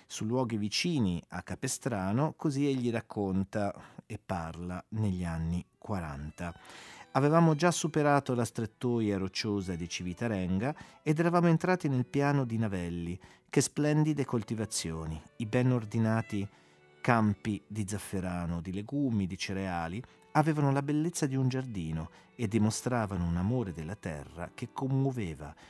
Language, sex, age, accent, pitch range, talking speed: Italian, male, 40-59, native, 90-125 Hz, 130 wpm